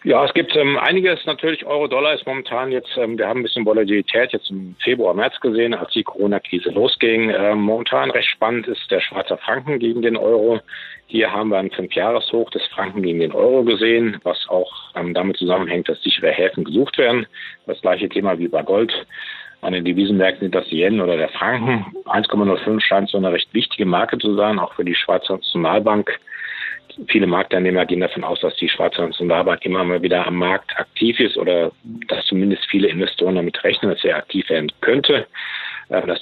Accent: German